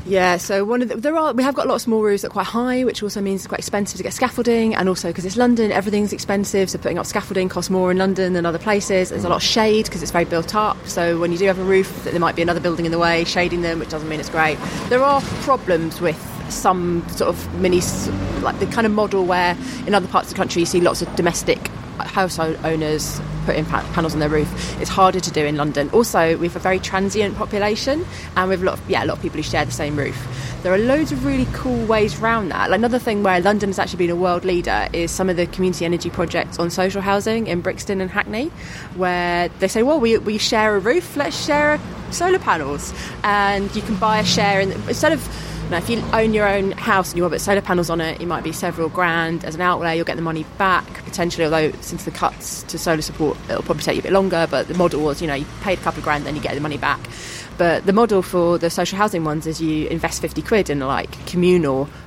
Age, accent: 20-39, British